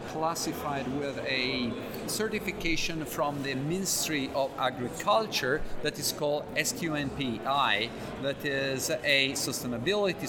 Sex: male